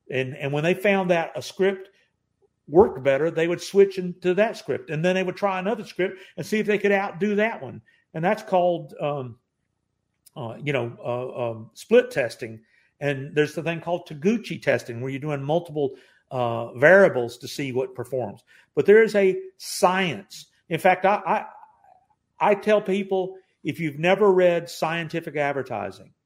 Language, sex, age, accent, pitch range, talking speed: English, male, 50-69, American, 140-190 Hz, 175 wpm